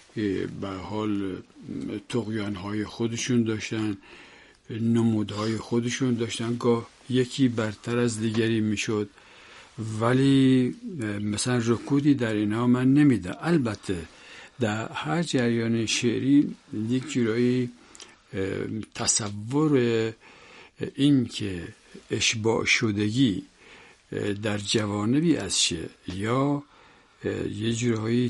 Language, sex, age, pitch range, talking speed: Persian, male, 60-79, 105-130 Hz, 85 wpm